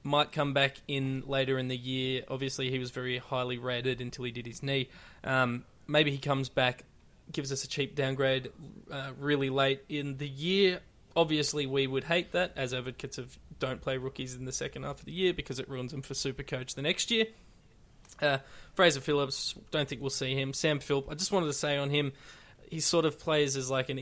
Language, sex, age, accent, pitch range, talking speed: English, male, 20-39, Australian, 130-145 Hz, 215 wpm